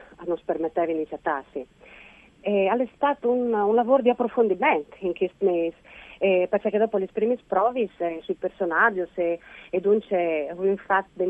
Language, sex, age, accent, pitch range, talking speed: Italian, female, 40-59, native, 165-205 Hz, 170 wpm